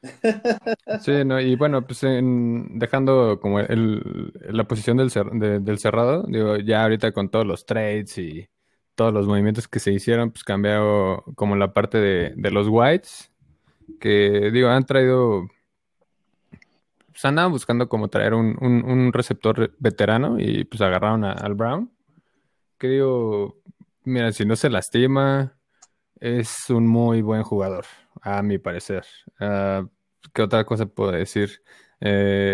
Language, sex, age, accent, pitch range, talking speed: Spanish, male, 20-39, Mexican, 105-125 Hz, 150 wpm